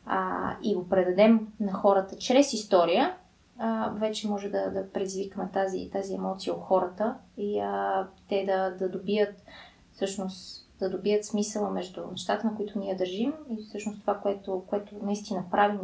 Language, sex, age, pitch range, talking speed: Bulgarian, female, 20-39, 185-210 Hz, 155 wpm